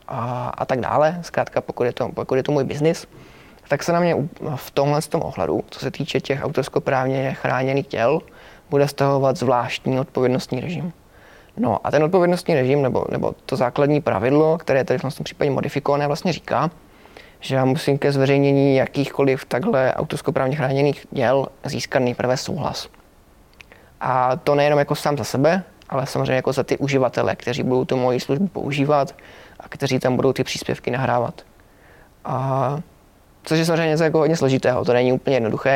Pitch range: 130-145 Hz